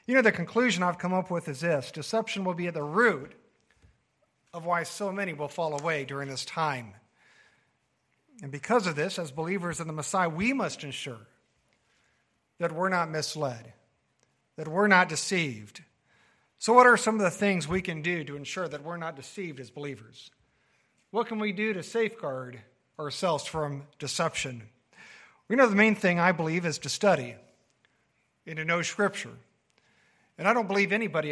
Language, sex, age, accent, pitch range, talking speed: English, male, 50-69, American, 150-200 Hz, 175 wpm